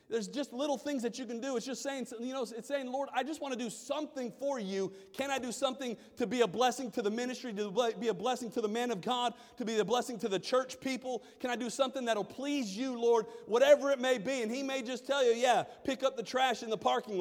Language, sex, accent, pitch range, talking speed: English, male, American, 215-275 Hz, 275 wpm